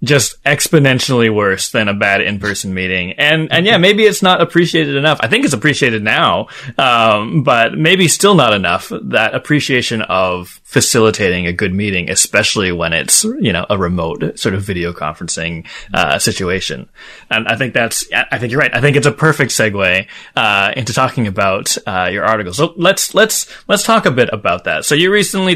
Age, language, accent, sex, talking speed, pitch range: 20-39, English, American, male, 190 wpm, 115-165 Hz